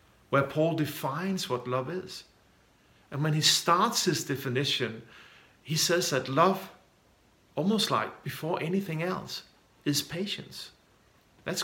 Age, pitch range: 50-69, 135-175 Hz